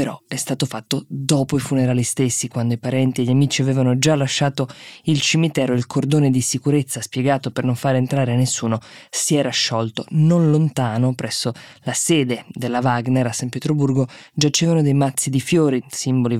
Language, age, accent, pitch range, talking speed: Italian, 20-39, native, 125-150 Hz, 180 wpm